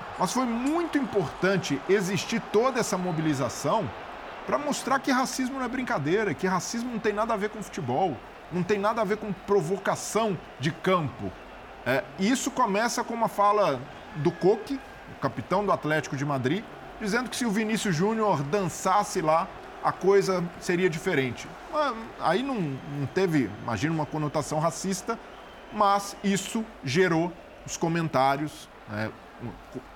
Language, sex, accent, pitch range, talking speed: Portuguese, male, Brazilian, 160-255 Hz, 150 wpm